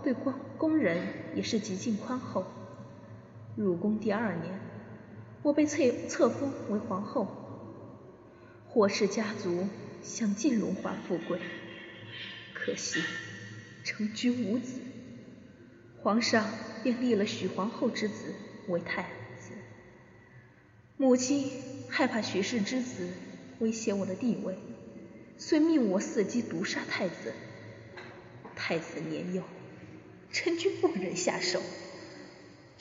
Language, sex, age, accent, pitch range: Chinese, female, 20-39, native, 190-255 Hz